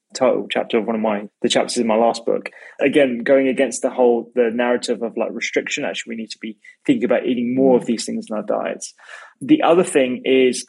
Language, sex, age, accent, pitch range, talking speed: English, male, 20-39, British, 120-145 Hz, 230 wpm